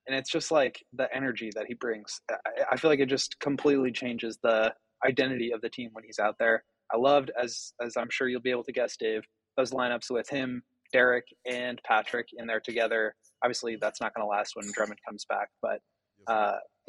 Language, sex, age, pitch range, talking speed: English, male, 20-39, 110-125 Hz, 210 wpm